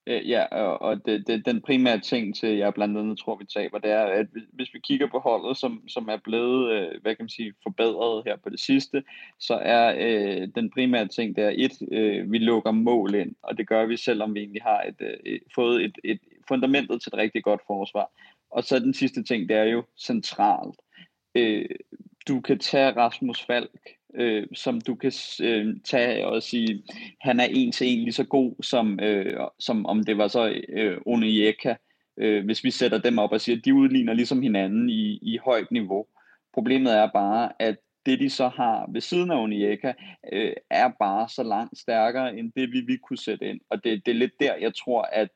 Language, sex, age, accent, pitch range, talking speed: Danish, male, 20-39, native, 110-140 Hz, 210 wpm